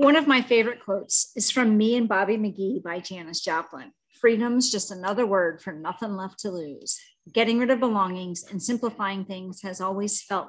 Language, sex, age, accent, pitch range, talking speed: English, female, 40-59, American, 180-235 Hz, 190 wpm